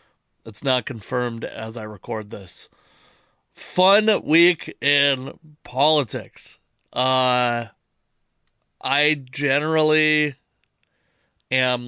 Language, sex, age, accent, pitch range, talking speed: English, male, 30-49, American, 115-150 Hz, 75 wpm